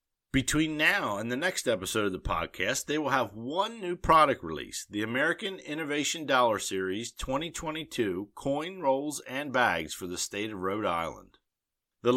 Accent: American